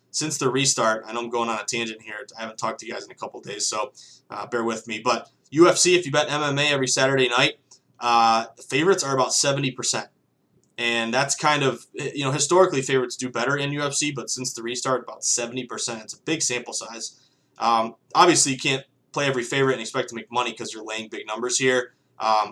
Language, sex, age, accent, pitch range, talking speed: English, male, 20-39, American, 115-140 Hz, 220 wpm